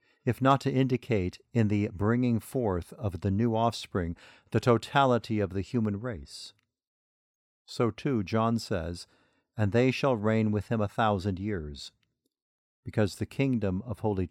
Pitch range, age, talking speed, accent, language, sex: 95-120 Hz, 50-69, 150 wpm, American, English, male